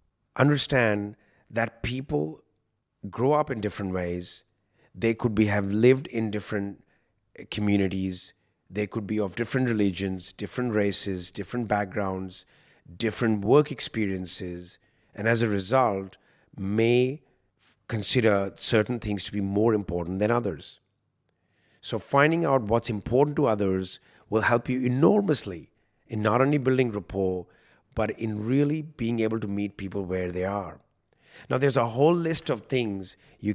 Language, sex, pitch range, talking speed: English, male, 100-125 Hz, 140 wpm